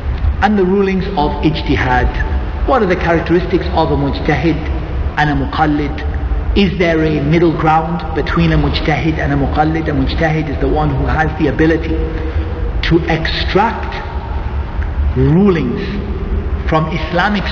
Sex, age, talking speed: male, 50-69, 135 wpm